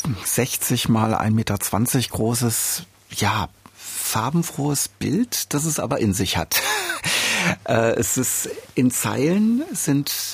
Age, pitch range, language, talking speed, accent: 60-79, 120-165 Hz, German, 110 wpm, German